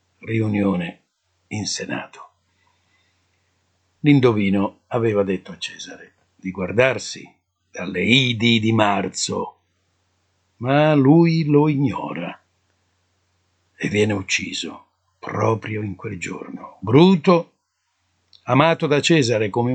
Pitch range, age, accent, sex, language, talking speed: 95-145 Hz, 60-79, native, male, Italian, 90 wpm